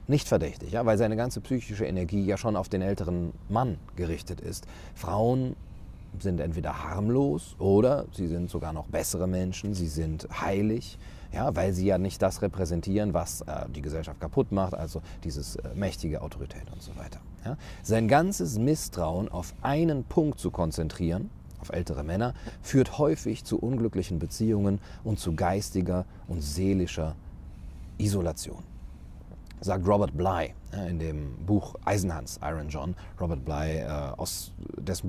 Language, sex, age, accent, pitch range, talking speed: German, male, 40-59, German, 80-100 Hz, 150 wpm